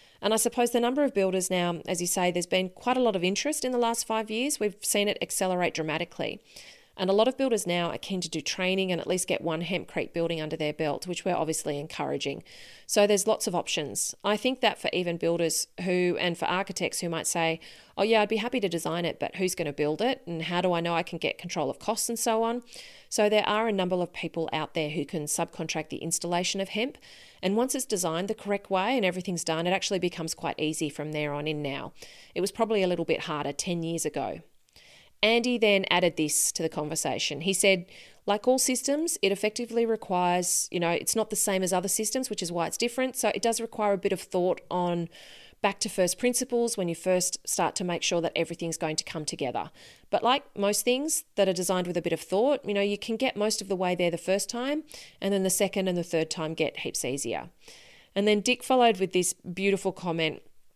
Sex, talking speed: female, 240 wpm